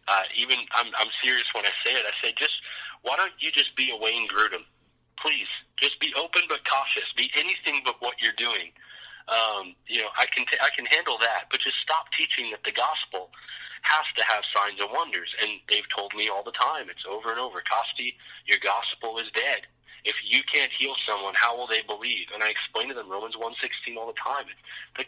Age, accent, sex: 30-49, American, male